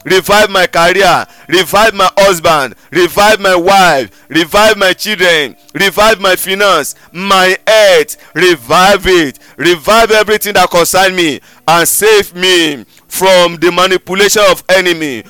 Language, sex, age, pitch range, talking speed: English, male, 50-69, 175-205 Hz, 125 wpm